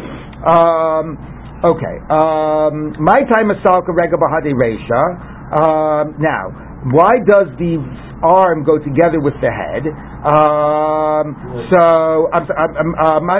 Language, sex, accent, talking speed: English, male, American, 90 wpm